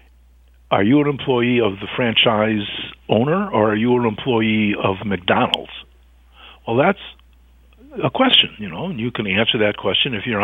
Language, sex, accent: English, male, American